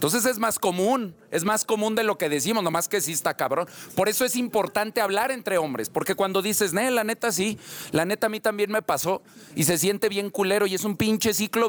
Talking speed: 235 wpm